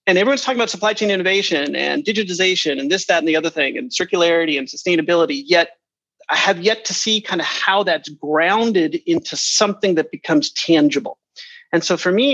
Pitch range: 155-205 Hz